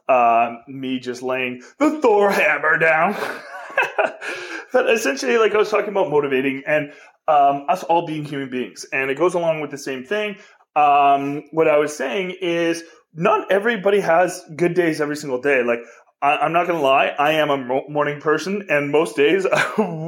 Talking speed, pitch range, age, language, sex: 185 wpm, 140-190 Hz, 30-49, English, male